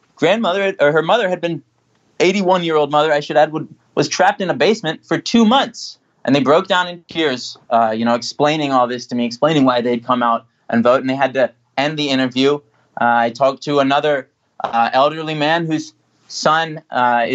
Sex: male